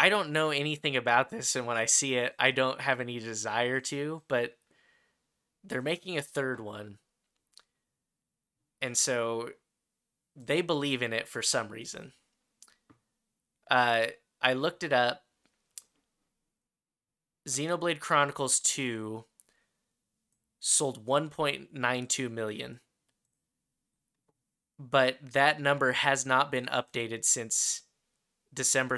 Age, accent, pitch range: 10-29, American, 115-140 Hz